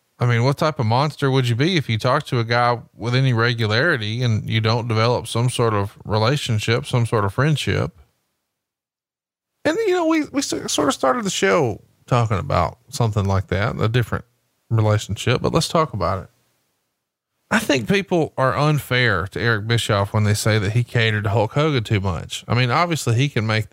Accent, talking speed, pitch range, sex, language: American, 195 wpm, 110-135 Hz, male, English